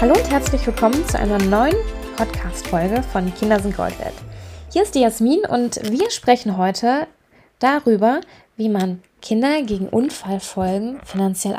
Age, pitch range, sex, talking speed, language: 20-39, 200-250 Hz, female, 140 wpm, German